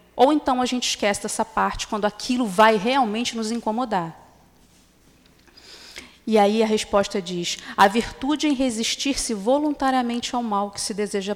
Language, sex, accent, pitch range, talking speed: Portuguese, female, Brazilian, 200-260 Hz, 150 wpm